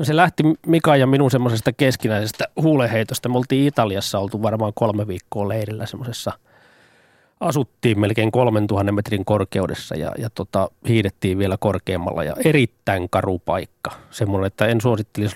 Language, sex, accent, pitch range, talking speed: Finnish, male, native, 95-125 Hz, 140 wpm